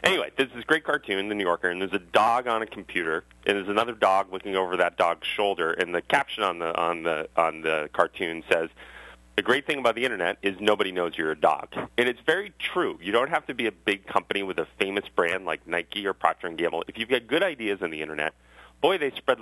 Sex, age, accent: male, 30-49, American